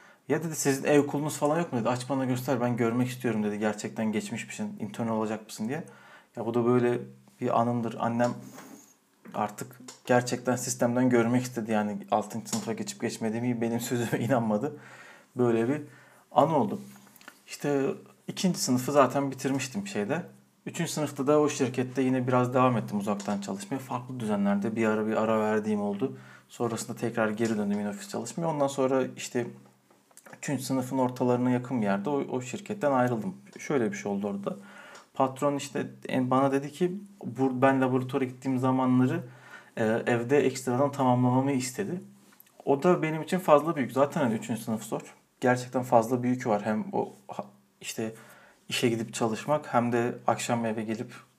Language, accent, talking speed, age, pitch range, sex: Turkish, native, 160 wpm, 40-59, 115-140 Hz, male